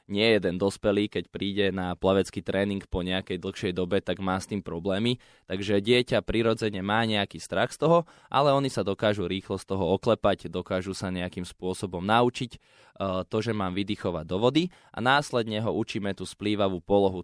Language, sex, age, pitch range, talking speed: Slovak, male, 20-39, 90-110 Hz, 180 wpm